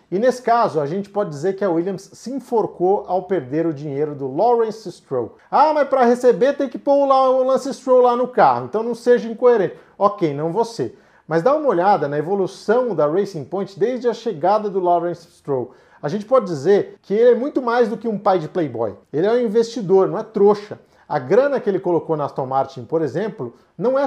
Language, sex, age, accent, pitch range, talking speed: Portuguese, male, 50-69, Brazilian, 160-240 Hz, 220 wpm